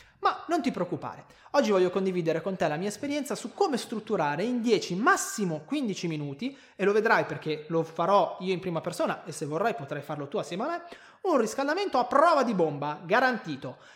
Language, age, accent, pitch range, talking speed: Italian, 20-39, native, 155-255 Hz, 200 wpm